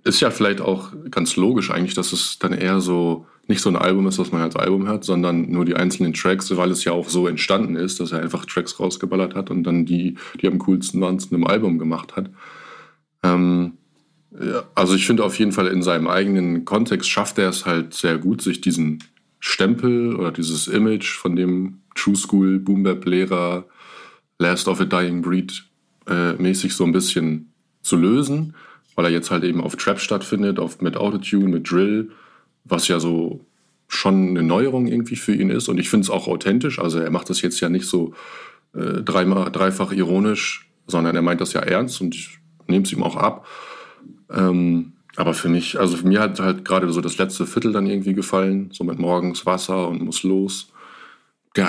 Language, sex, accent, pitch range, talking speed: German, male, German, 85-95 Hz, 200 wpm